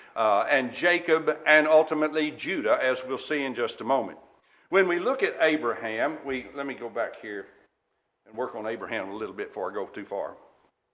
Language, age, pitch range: English, 60-79, 130-175 Hz